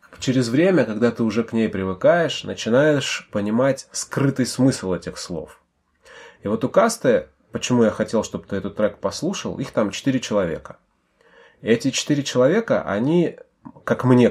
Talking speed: 155 wpm